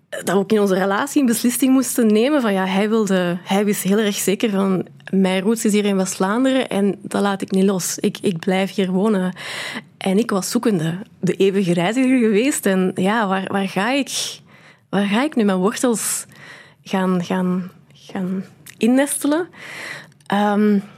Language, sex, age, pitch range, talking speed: Dutch, female, 20-39, 190-225 Hz, 175 wpm